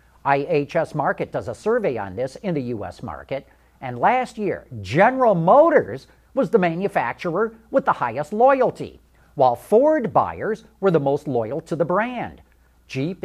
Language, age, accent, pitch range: English, 50-69, American, 140-210 Hz